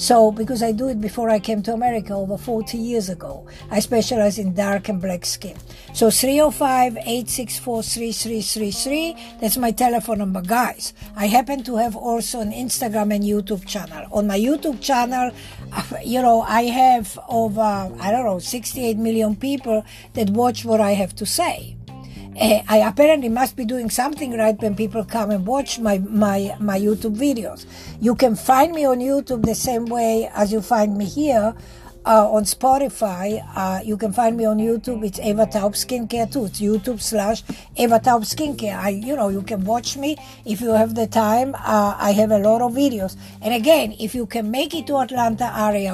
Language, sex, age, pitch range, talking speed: English, female, 60-79, 210-245 Hz, 185 wpm